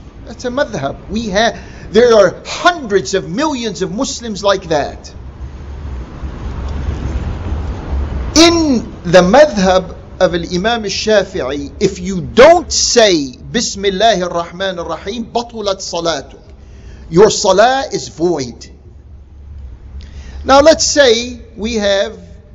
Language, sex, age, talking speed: English, male, 50-69, 100 wpm